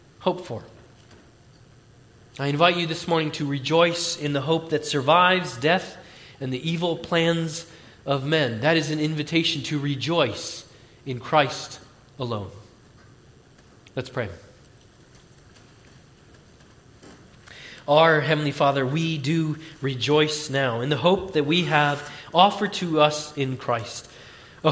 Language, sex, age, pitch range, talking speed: English, male, 30-49, 135-175 Hz, 125 wpm